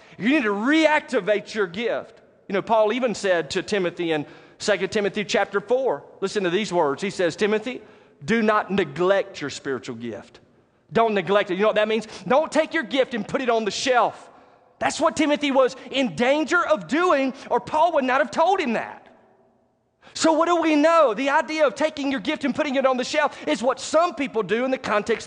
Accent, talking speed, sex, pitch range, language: American, 215 wpm, male, 195-285 Hz, English